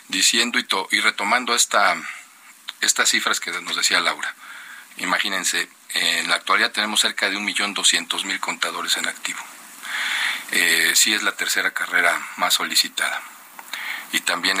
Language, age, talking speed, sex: Spanish, 40-59, 125 wpm, male